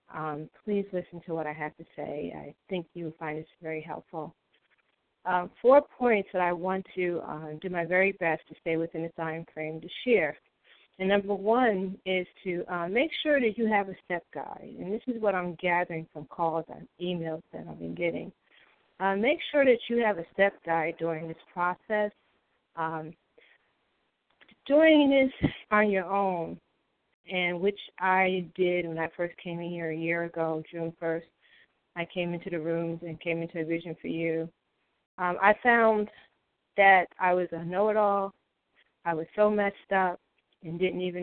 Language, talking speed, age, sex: English, 185 wpm, 40-59, female